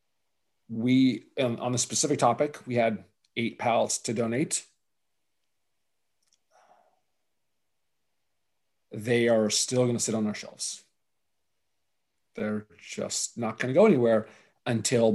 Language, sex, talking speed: English, male, 105 wpm